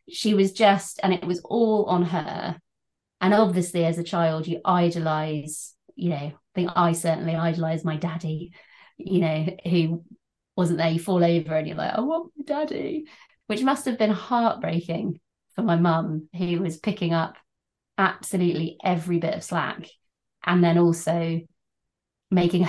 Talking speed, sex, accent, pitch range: 160 wpm, female, British, 165-185 Hz